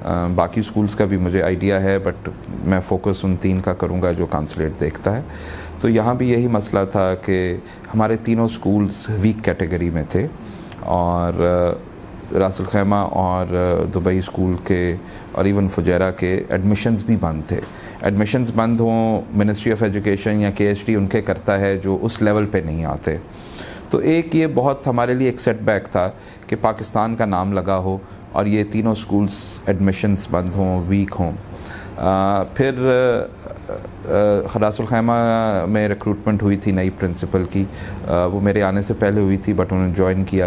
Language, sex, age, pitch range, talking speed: Urdu, male, 30-49, 90-105 Hz, 170 wpm